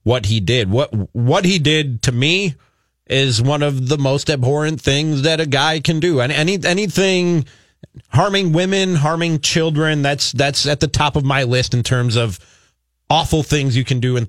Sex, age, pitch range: male, 30-49, 125-155 Hz